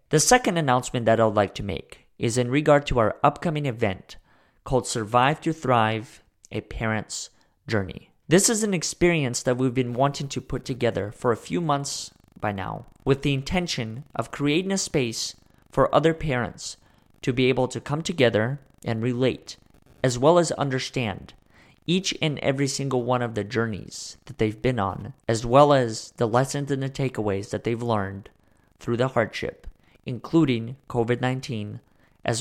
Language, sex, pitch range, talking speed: English, male, 110-145 Hz, 165 wpm